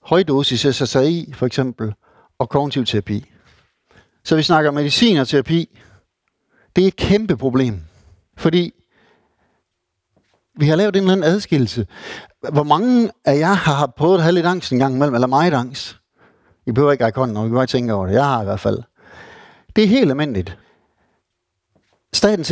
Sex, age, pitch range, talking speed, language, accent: male, 60-79, 115-170 Hz, 165 wpm, Danish, native